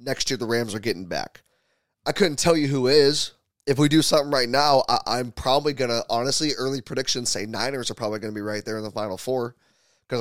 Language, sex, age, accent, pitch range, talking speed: English, male, 20-39, American, 110-145 Hz, 235 wpm